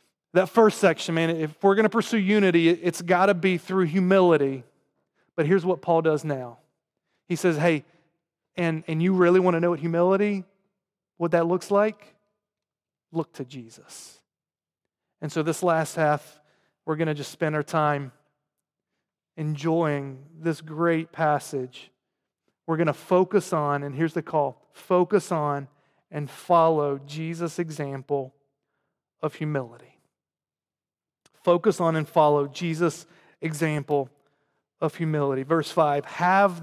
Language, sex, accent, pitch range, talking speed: English, male, American, 155-185 Hz, 140 wpm